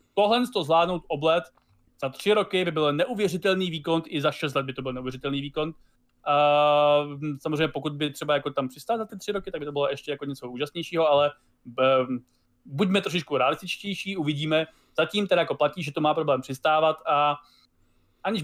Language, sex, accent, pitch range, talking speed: Czech, male, native, 140-180 Hz, 180 wpm